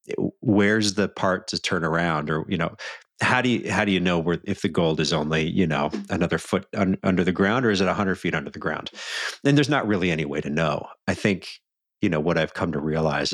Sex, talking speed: male, 250 wpm